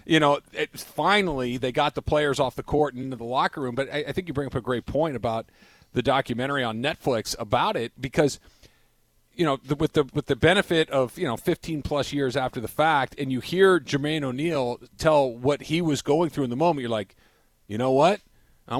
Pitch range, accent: 130-165 Hz, American